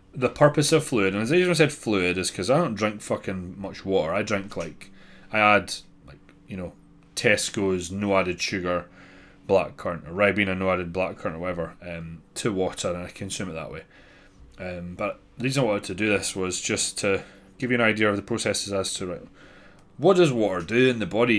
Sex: male